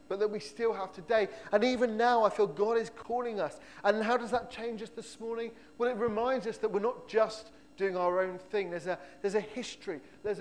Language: English